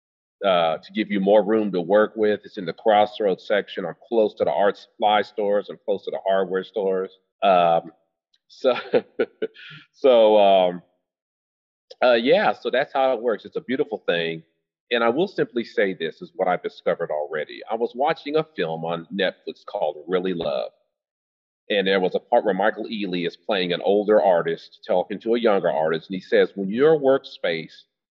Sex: male